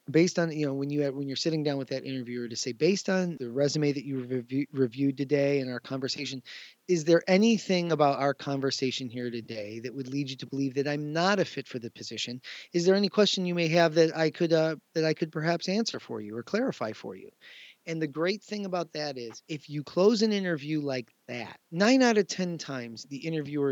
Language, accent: English, American